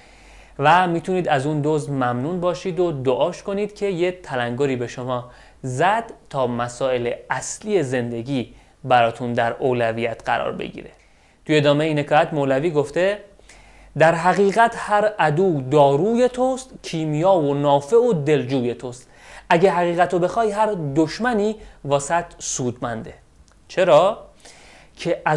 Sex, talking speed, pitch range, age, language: male, 120 wpm, 140-195 Hz, 30-49, Persian